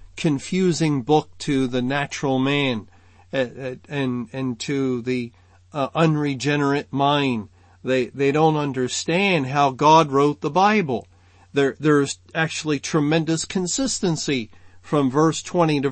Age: 50-69